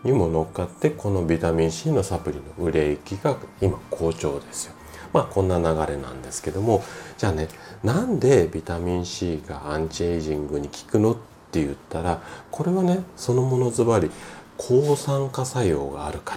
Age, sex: 40-59, male